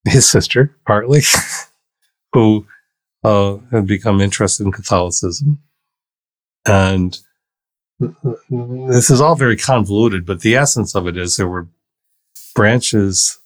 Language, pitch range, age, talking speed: English, 90-110 Hz, 40-59, 110 wpm